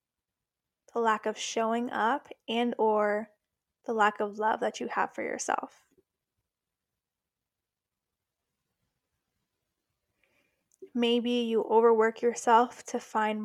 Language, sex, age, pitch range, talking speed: English, female, 10-29, 215-240 Hz, 95 wpm